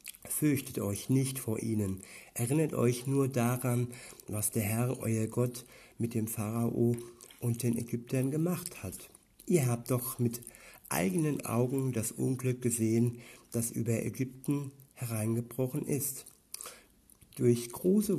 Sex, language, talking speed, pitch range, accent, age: male, German, 125 wpm, 115-130 Hz, German, 60-79